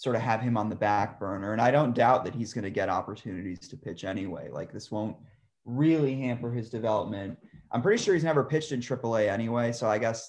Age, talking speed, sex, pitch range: 20-39, 240 wpm, male, 105-120 Hz